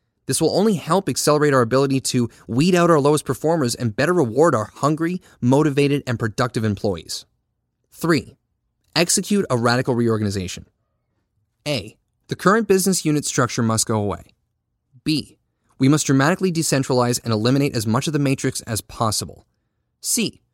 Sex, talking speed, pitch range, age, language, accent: male, 150 wpm, 115-155 Hz, 30-49, English, American